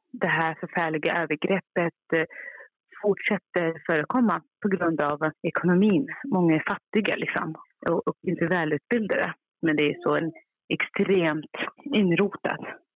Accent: native